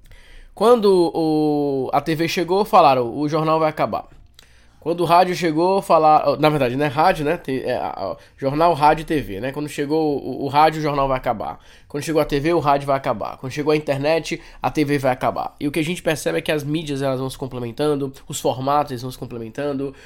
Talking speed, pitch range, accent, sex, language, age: 205 wpm, 130-170 Hz, Brazilian, male, Portuguese, 20-39